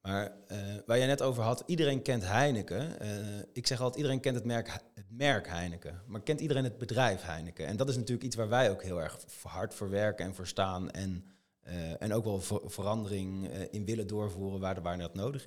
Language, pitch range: Dutch, 95-125 Hz